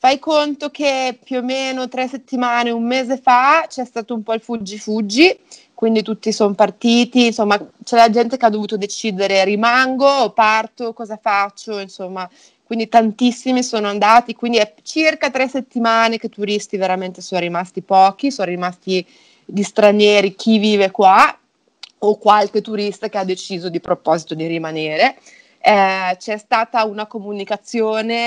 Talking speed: 155 wpm